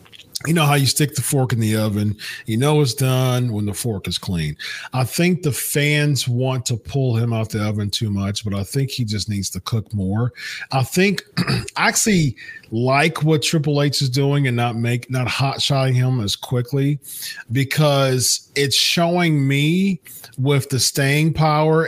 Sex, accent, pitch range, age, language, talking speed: male, American, 115-145 Hz, 40-59, English, 185 wpm